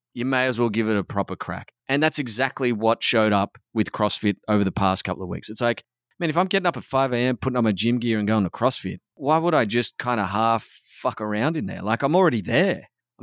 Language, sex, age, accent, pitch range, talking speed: English, male, 30-49, Australian, 110-145 Hz, 265 wpm